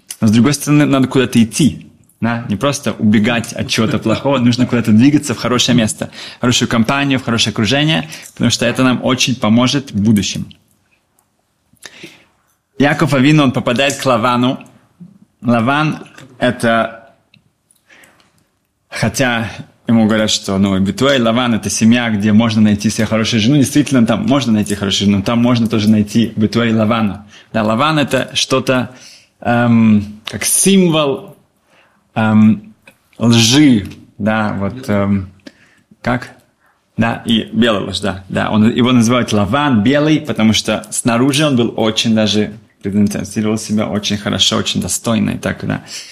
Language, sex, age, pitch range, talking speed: Russian, male, 30-49, 110-125 Hz, 135 wpm